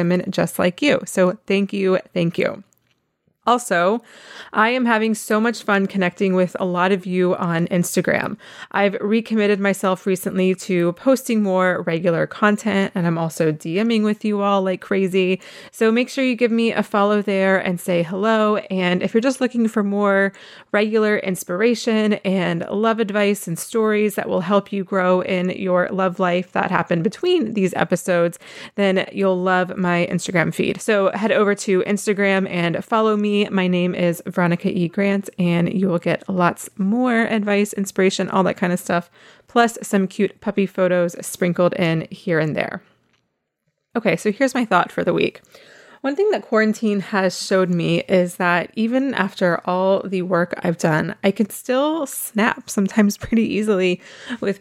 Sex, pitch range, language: female, 180-210 Hz, English